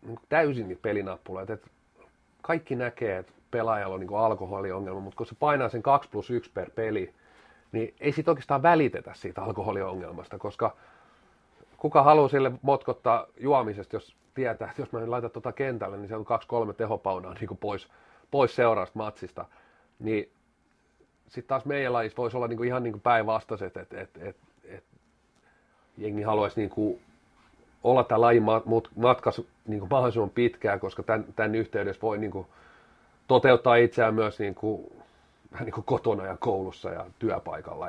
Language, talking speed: Finnish, 150 wpm